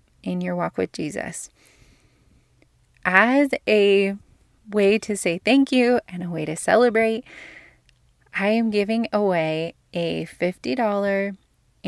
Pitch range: 170-215 Hz